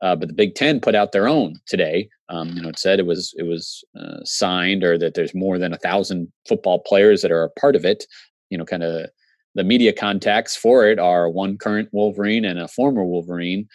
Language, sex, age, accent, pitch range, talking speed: English, male, 30-49, American, 85-105 Hz, 230 wpm